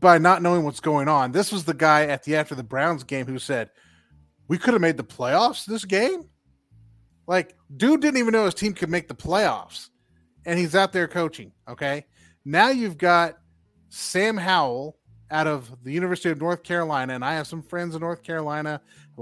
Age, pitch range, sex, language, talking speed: 30-49, 125-185 Hz, male, English, 200 wpm